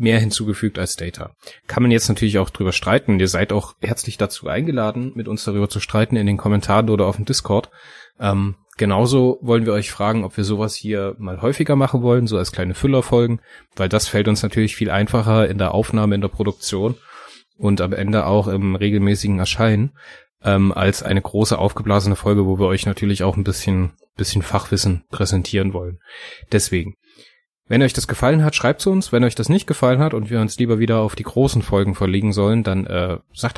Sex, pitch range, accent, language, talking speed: male, 100-115 Hz, German, German, 200 wpm